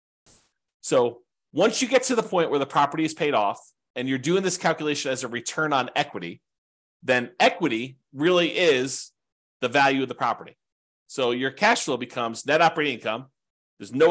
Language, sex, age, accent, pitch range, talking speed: English, male, 30-49, American, 120-180 Hz, 180 wpm